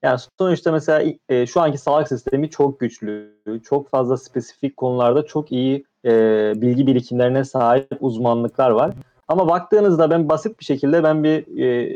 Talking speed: 155 wpm